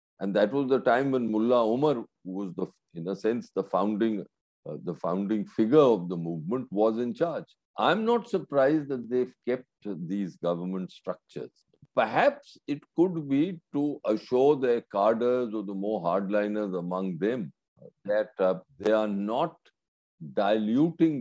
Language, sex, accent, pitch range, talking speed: English, male, Indian, 100-145 Hz, 155 wpm